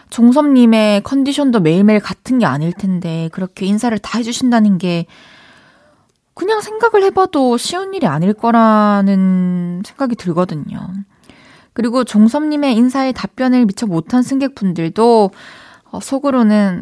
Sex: female